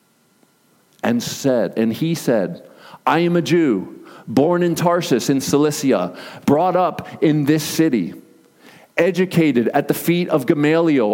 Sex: male